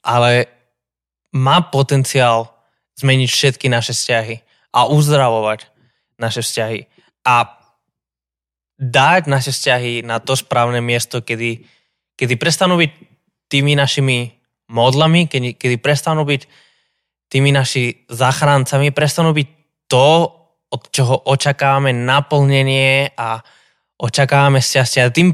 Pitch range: 120-145 Hz